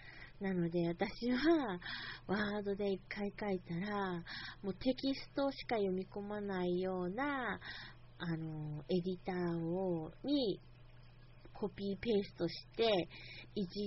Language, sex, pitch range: Japanese, female, 160-205 Hz